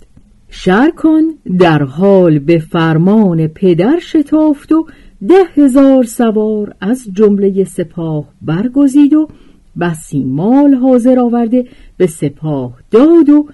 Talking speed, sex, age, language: 105 wpm, female, 50-69, Persian